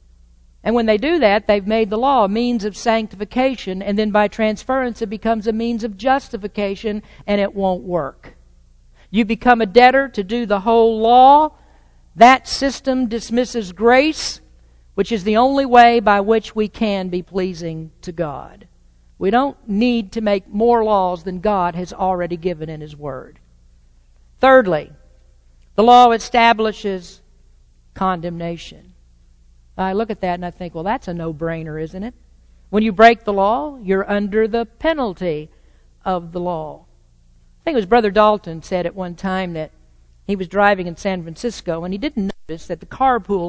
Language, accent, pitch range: English, American, 160-230 Hz